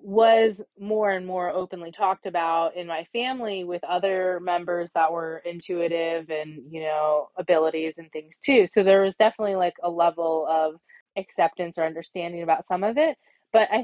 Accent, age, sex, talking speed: American, 20-39, female, 175 wpm